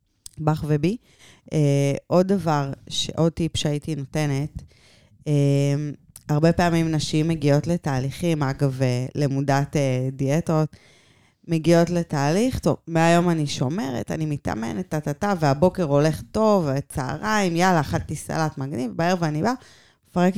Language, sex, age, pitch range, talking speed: Hebrew, female, 20-39, 140-180 Hz, 120 wpm